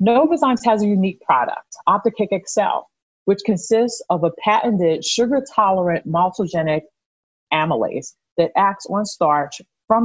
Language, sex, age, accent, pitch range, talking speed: English, female, 40-59, American, 170-215 Hz, 125 wpm